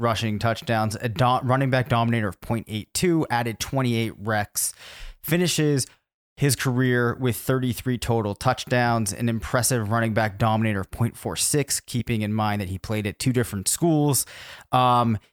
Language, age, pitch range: English, 30-49, 105-125 Hz